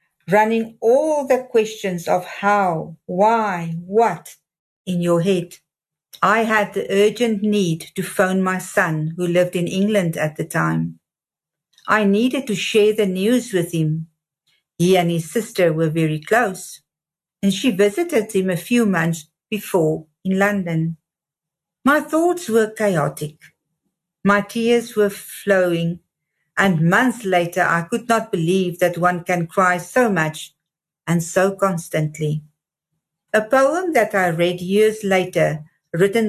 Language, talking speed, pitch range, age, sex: English, 140 wpm, 165-210 Hz, 50-69, female